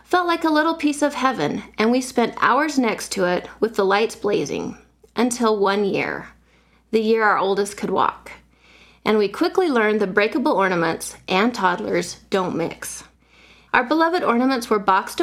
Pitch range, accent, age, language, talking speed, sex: 205-270 Hz, American, 30-49, English, 170 wpm, female